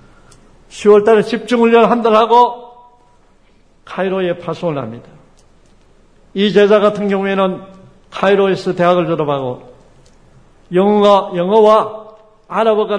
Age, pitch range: 60-79, 155-210 Hz